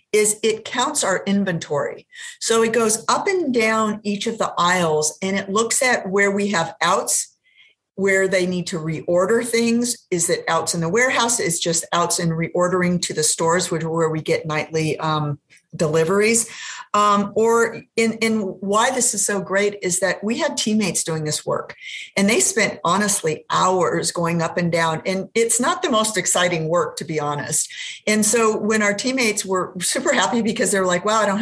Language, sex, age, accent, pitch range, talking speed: English, female, 50-69, American, 175-220 Hz, 200 wpm